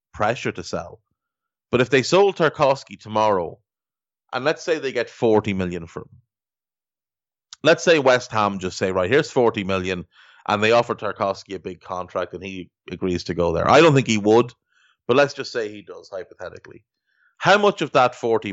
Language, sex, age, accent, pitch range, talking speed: English, male, 30-49, Irish, 95-120 Hz, 185 wpm